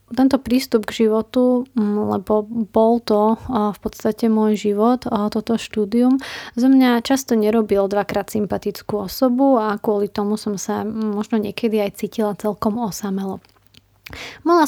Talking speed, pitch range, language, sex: 130 wpm, 210-230 Hz, Slovak, female